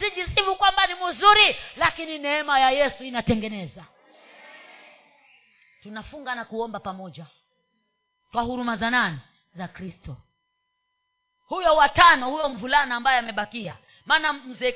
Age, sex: 30-49, female